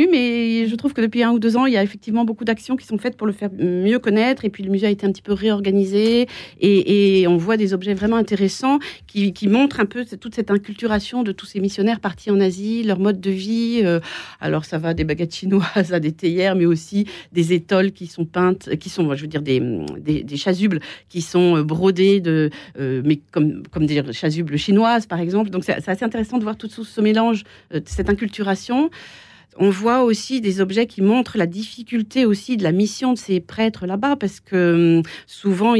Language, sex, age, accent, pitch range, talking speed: French, female, 40-59, French, 175-225 Hz, 215 wpm